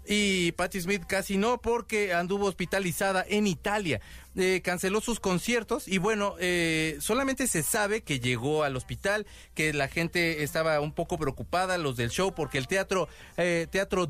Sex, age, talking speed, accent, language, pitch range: male, 40-59, 165 wpm, Mexican, Spanish, 150-200 Hz